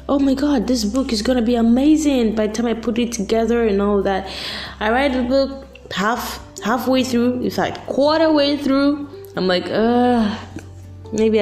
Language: English